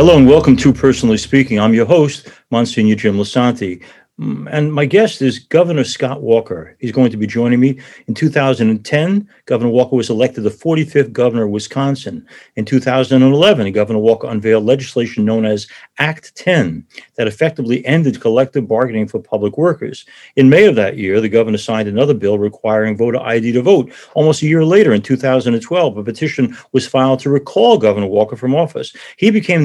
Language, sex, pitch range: English, male, 110-140 Hz